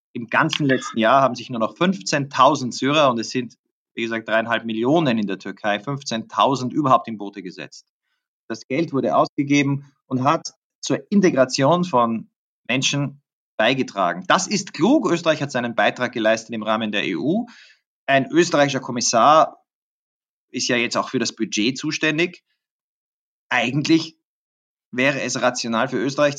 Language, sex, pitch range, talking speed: German, male, 115-155 Hz, 150 wpm